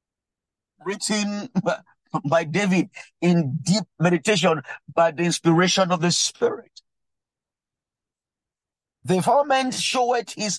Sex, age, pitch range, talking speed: male, 50-69, 150-195 Hz, 90 wpm